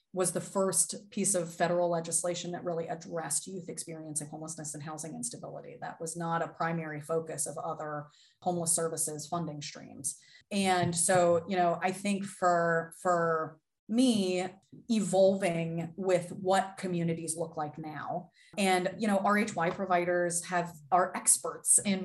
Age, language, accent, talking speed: 30-49, English, American, 145 wpm